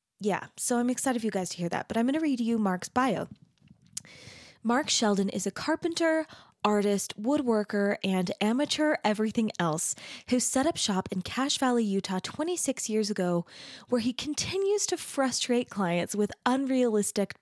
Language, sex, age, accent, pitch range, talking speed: English, female, 20-39, American, 180-230 Hz, 165 wpm